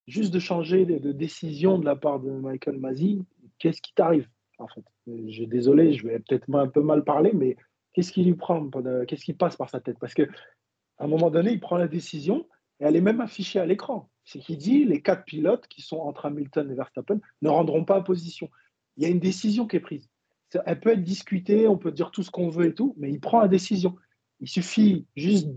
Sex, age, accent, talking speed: male, 40-59, French, 235 wpm